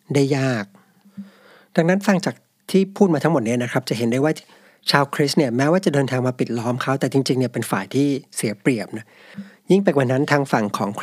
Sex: male